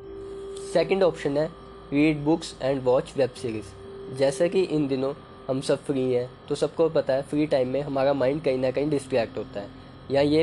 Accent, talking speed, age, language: native, 195 wpm, 10-29, Hindi